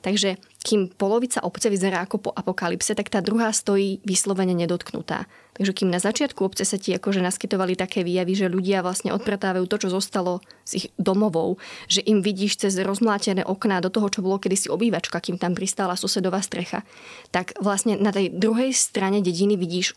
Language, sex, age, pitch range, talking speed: Slovak, female, 20-39, 190-220 Hz, 180 wpm